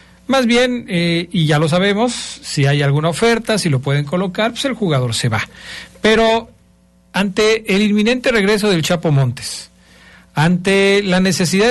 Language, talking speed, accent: Spanish, 160 wpm, Mexican